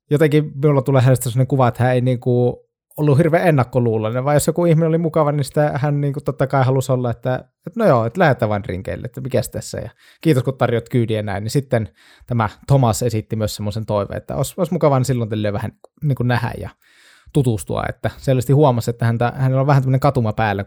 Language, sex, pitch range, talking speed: Finnish, male, 110-140 Hz, 230 wpm